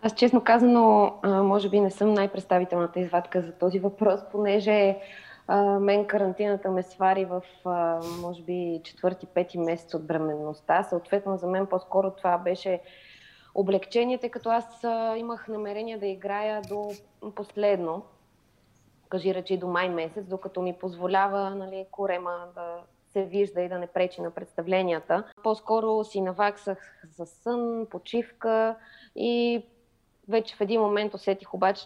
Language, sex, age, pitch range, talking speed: Bulgarian, female, 20-39, 175-210 Hz, 140 wpm